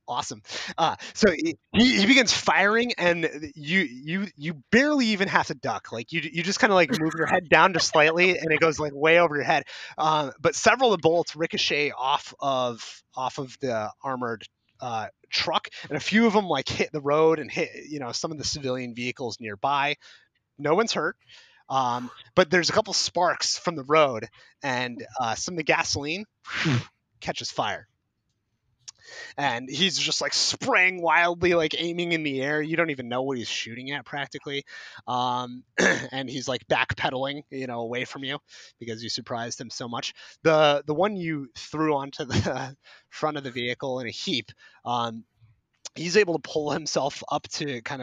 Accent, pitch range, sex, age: American, 125-170 Hz, male, 30-49